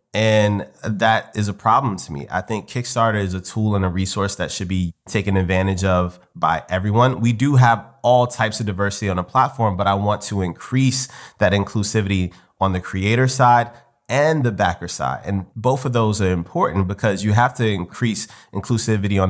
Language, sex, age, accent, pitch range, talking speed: English, male, 30-49, American, 90-110 Hz, 195 wpm